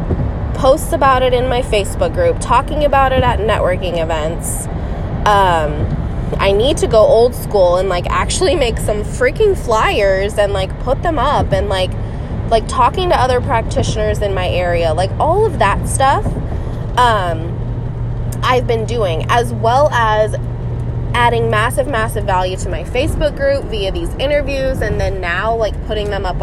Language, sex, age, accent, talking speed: English, female, 20-39, American, 165 wpm